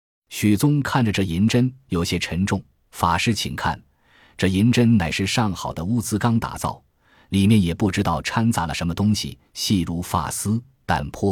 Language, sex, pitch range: Chinese, male, 85-115 Hz